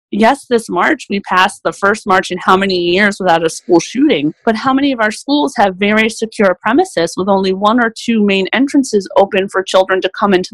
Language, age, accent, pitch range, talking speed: English, 30-49, American, 175-235 Hz, 220 wpm